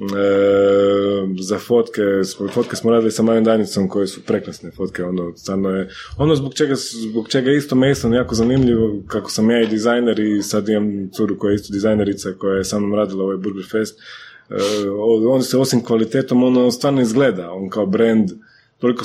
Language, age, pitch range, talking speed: Croatian, 20-39, 100-115 Hz, 180 wpm